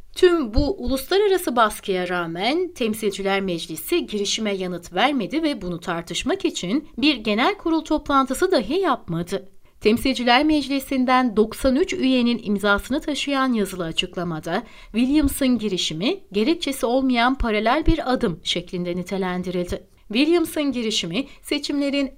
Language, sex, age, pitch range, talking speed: Turkish, female, 60-79, 190-285 Hz, 110 wpm